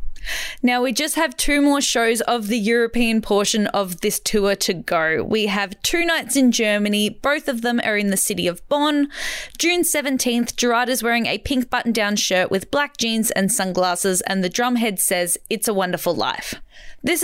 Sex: female